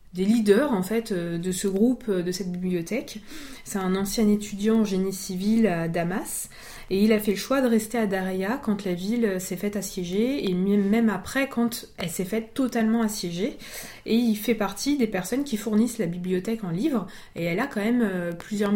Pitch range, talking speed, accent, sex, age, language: 190-230 Hz, 195 wpm, French, female, 20-39, French